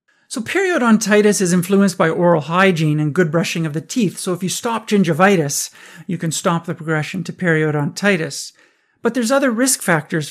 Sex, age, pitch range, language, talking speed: male, 50-69, 165-210 Hz, English, 175 wpm